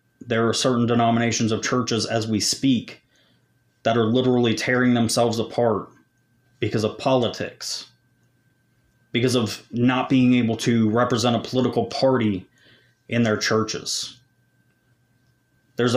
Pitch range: 110-130 Hz